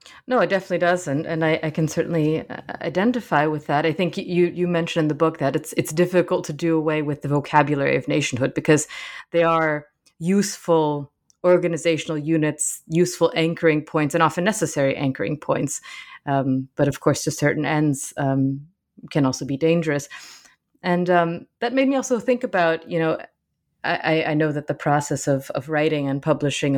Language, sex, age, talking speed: English, female, 30-49, 180 wpm